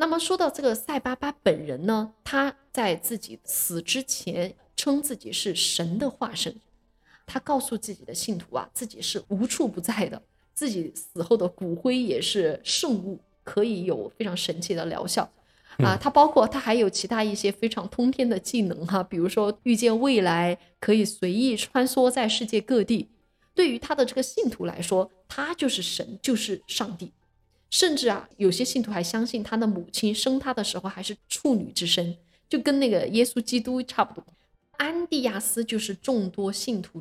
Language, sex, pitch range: Chinese, female, 190-255 Hz